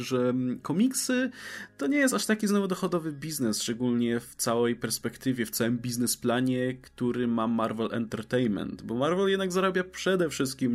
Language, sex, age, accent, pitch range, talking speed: Polish, male, 20-39, native, 115-150 Hz, 150 wpm